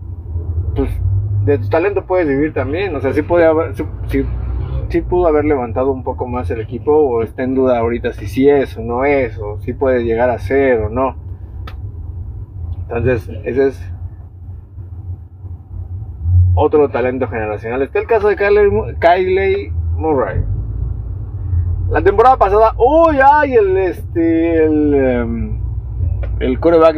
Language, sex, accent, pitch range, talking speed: Spanish, male, Mexican, 95-150 Hz, 150 wpm